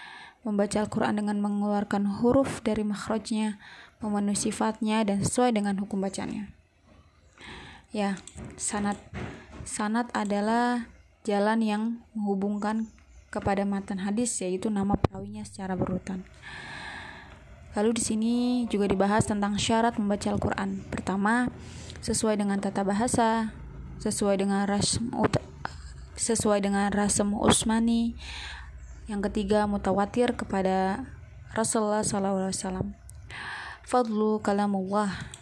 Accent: native